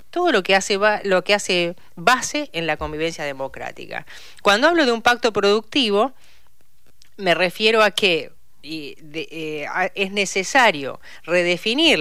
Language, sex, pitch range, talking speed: Spanish, female, 150-205 Hz, 145 wpm